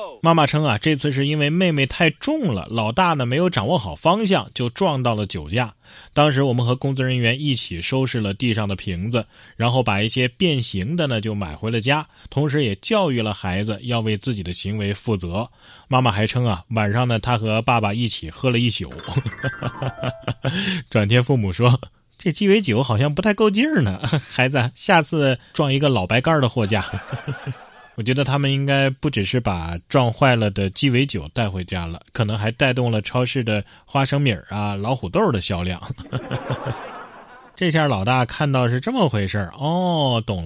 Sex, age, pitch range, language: male, 20-39, 110-165 Hz, Chinese